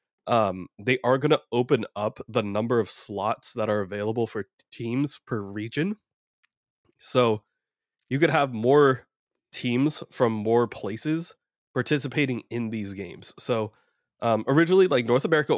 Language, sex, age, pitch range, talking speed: English, male, 20-39, 110-130 Hz, 145 wpm